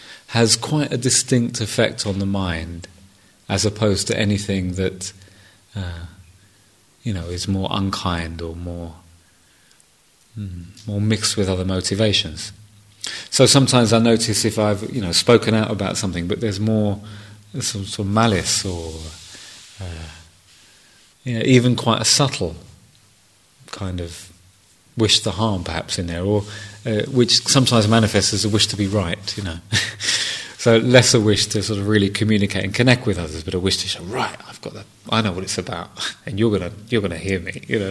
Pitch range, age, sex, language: 95-115 Hz, 30-49, male, English